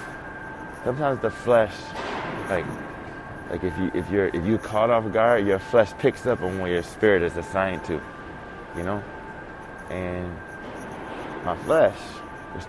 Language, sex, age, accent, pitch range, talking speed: English, male, 20-39, American, 95-120 Hz, 155 wpm